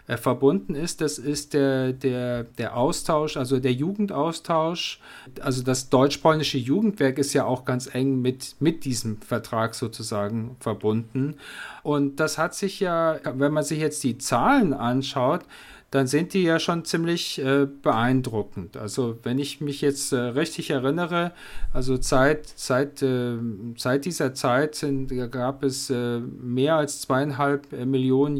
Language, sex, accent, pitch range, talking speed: German, male, German, 130-150 Hz, 140 wpm